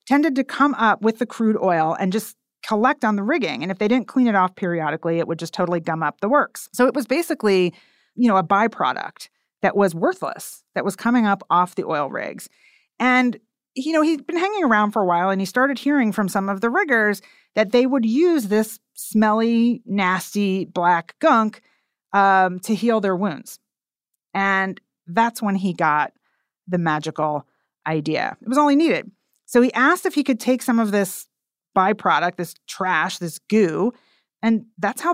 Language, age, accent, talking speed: English, 40-59, American, 200 wpm